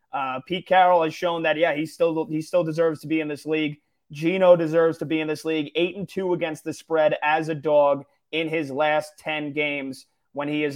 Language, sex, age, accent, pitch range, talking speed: English, male, 30-49, American, 150-175 Hz, 230 wpm